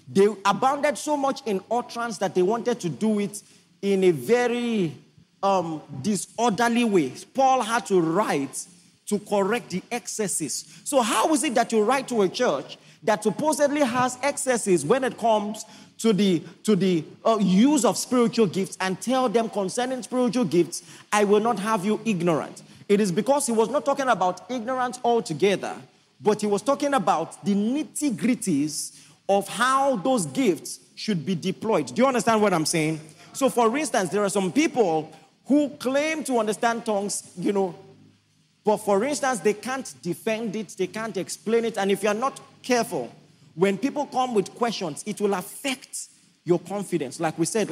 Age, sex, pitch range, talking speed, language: 40-59, male, 185-245 Hz, 175 wpm, English